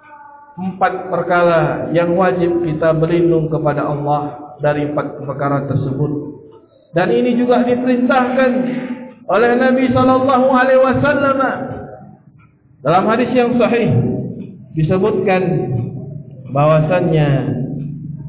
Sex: male